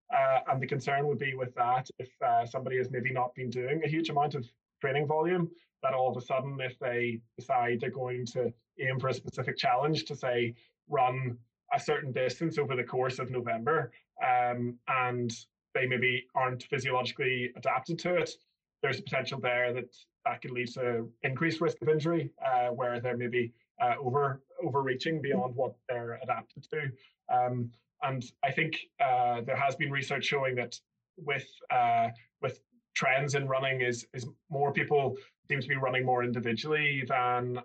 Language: English